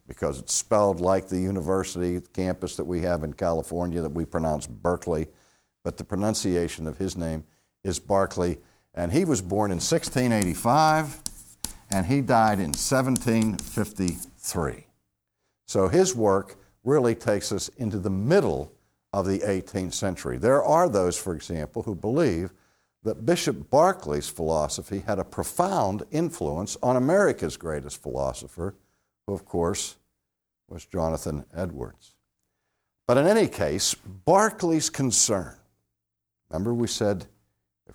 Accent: American